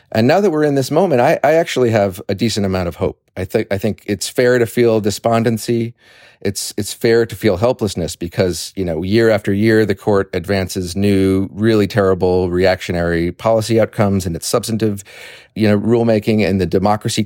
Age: 40-59